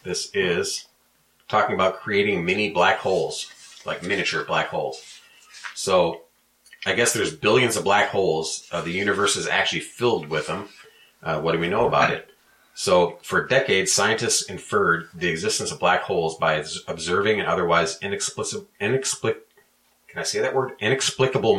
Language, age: English, 30-49